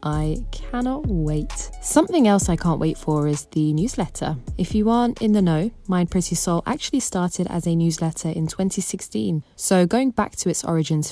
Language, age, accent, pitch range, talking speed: English, 20-39, British, 155-200 Hz, 185 wpm